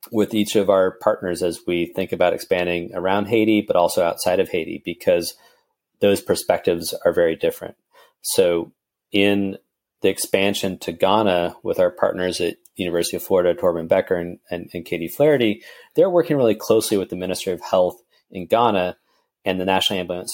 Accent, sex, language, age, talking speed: American, male, English, 30-49, 170 wpm